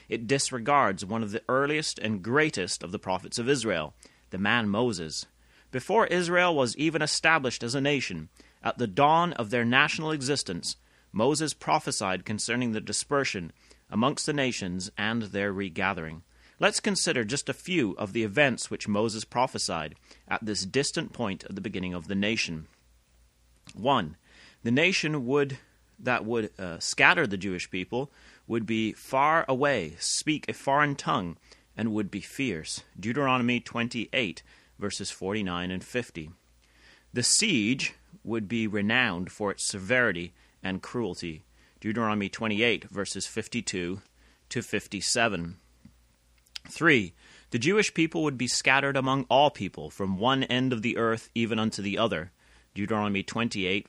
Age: 30-49